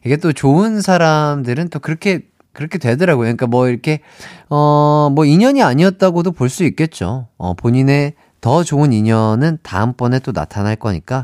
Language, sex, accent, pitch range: Korean, male, native, 105-155 Hz